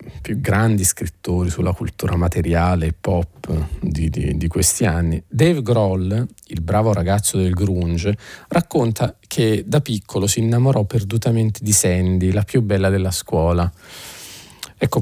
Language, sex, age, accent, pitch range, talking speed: Italian, male, 40-59, native, 95-115 Hz, 135 wpm